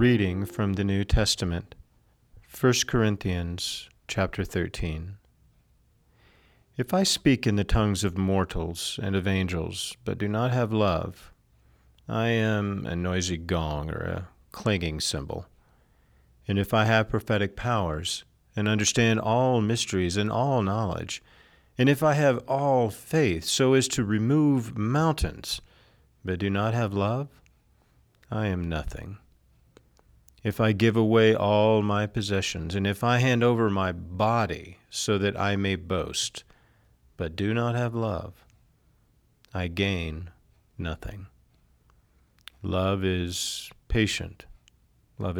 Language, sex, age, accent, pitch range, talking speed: English, male, 40-59, American, 90-115 Hz, 130 wpm